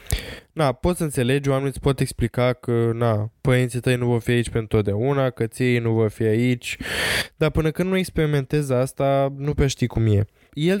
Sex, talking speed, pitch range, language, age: male, 200 wpm, 120-155 Hz, Romanian, 20-39